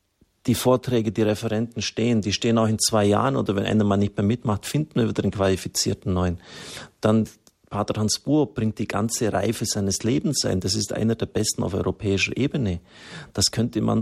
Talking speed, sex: 195 wpm, male